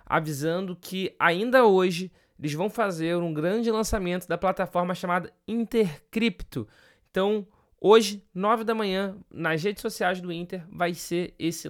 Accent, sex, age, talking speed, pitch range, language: Brazilian, male, 20-39, 140 wpm, 165-205 Hz, Portuguese